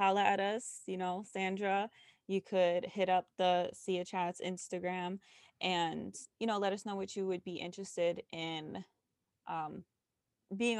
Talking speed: 155 wpm